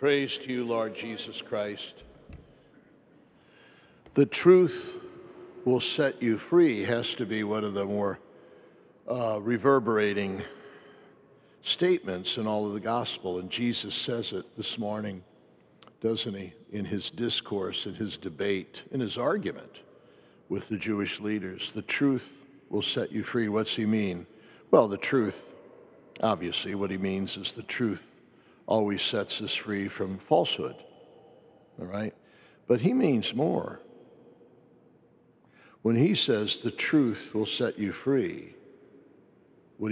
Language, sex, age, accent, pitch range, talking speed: English, male, 60-79, American, 100-120 Hz, 135 wpm